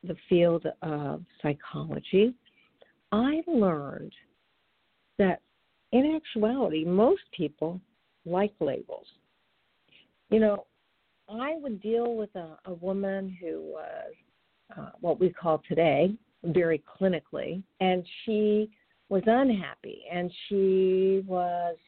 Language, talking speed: English, 105 wpm